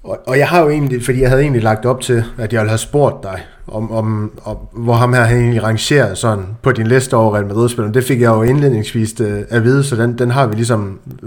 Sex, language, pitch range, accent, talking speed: male, Danish, 110-130 Hz, native, 245 wpm